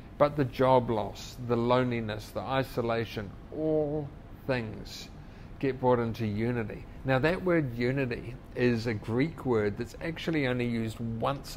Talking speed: 140 wpm